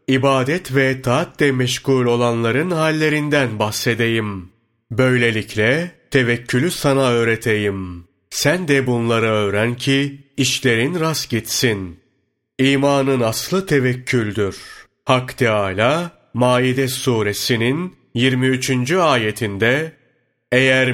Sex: male